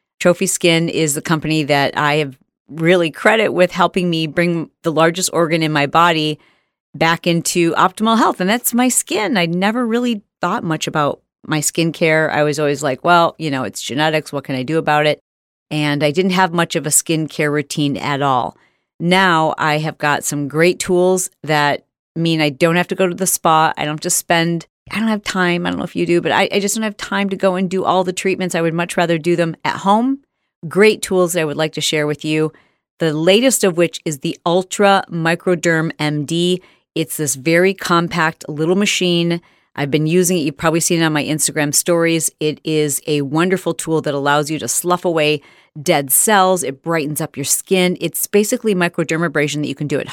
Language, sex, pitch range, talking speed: English, female, 155-185 Hz, 215 wpm